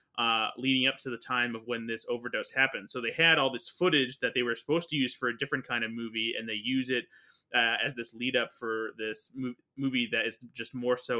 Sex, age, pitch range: male, 20-39, 110-130 Hz